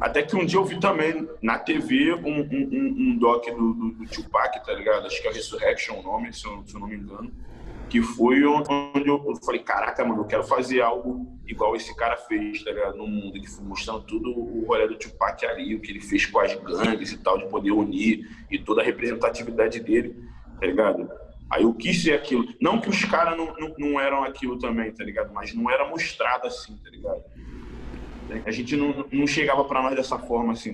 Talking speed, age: 220 wpm, 20-39